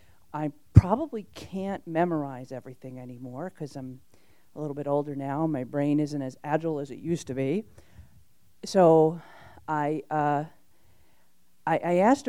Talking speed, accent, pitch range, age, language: 140 wpm, American, 145-175 Hz, 50-69, English